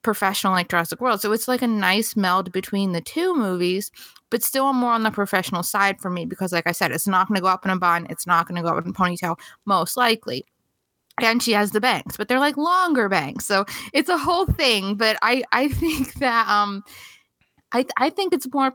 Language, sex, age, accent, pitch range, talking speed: English, female, 20-39, American, 185-235 Hz, 235 wpm